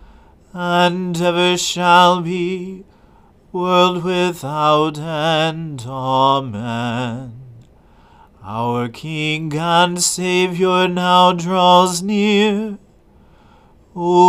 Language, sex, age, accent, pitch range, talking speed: English, male, 40-59, American, 130-165 Hz, 65 wpm